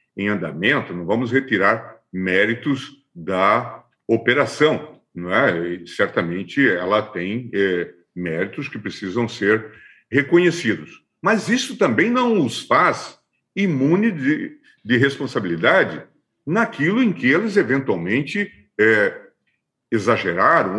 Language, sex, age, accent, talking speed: Portuguese, male, 50-69, Brazilian, 90 wpm